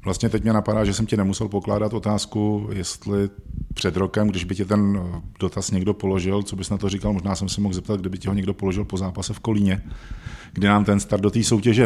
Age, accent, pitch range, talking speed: 40-59, native, 95-115 Hz, 235 wpm